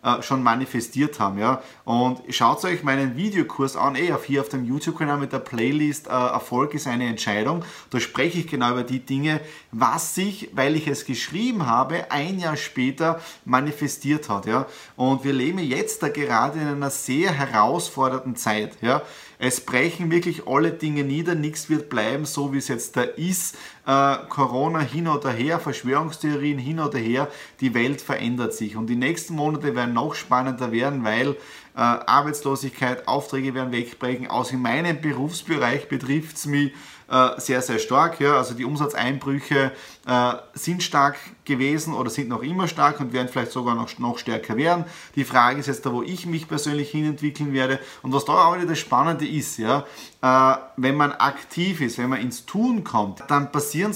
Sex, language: male, German